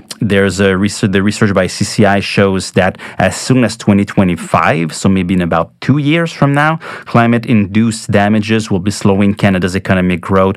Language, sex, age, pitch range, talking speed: English, male, 30-49, 90-110 Hz, 165 wpm